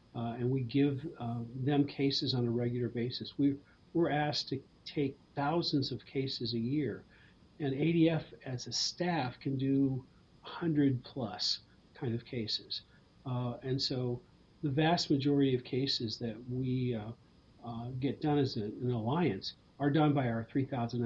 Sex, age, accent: male, 50-69, American